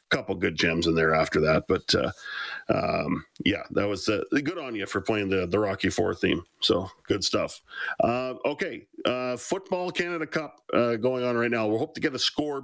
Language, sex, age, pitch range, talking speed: English, male, 40-59, 105-125 Hz, 215 wpm